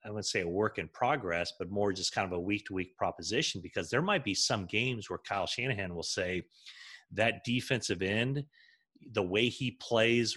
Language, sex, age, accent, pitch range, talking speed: English, male, 30-49, American, 95-125 Hz, 190 wpm